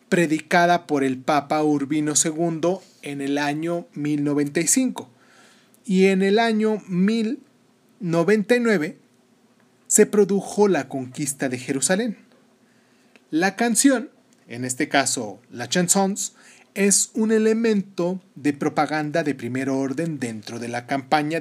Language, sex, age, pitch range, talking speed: Spanish, male, 30-49, 145-225 Hz, 110 wpm